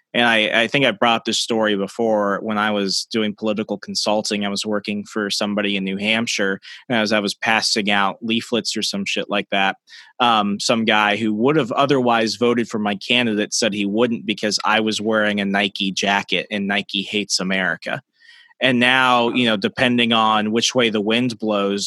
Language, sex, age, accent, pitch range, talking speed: English, male, 20-39, American, 105-120 Hz, 195 wpm